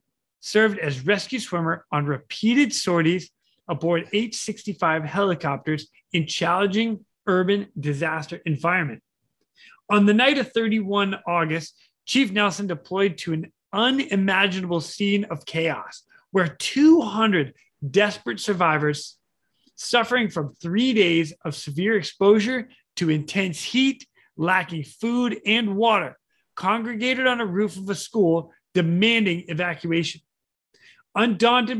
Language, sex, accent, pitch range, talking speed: English, male, American, 170-225 Hz, 110 wpm